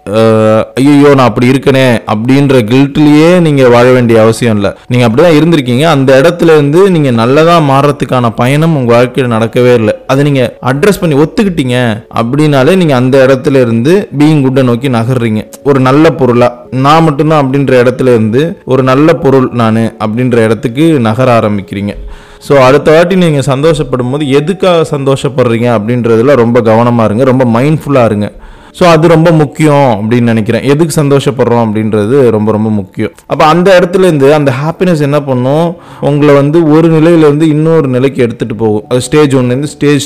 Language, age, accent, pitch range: Tamil, 20-39, native, 115-150 Hz